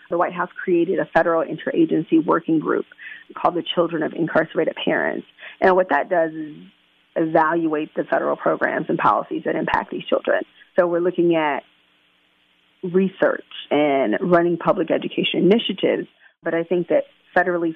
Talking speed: 150 wpm